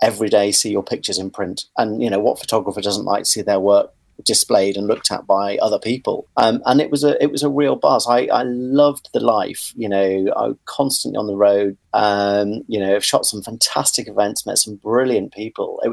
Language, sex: English, male